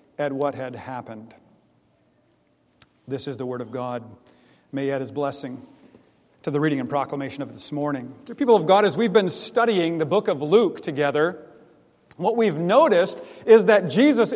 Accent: American